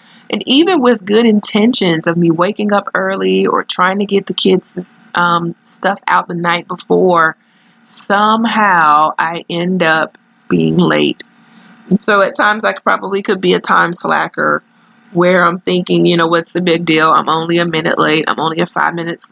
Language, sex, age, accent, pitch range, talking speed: English, female, 20-39, American, 175-235 Hz, 185 wpm